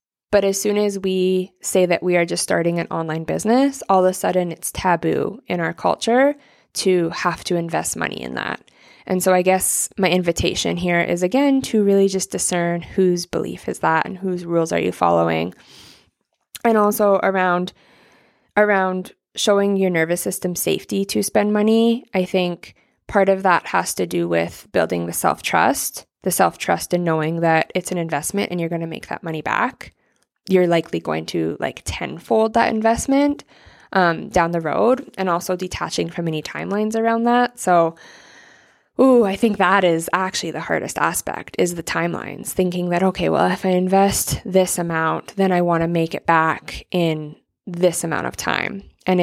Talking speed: 180 wpm